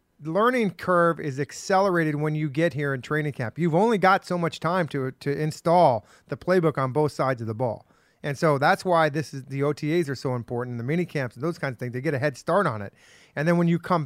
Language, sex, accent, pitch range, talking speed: English, male, American, 135-175 Hz, 250 wpm